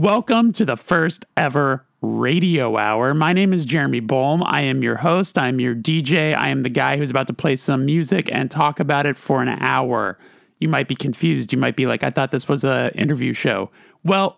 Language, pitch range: English, 125-165 Hz